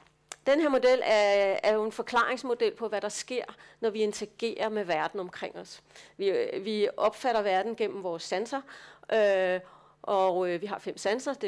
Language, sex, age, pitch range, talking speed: Danish, female, 40-59, 205-255 Hz, 165 wpm